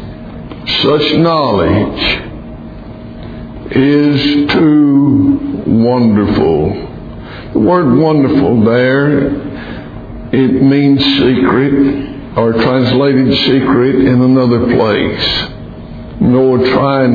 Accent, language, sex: American, English, male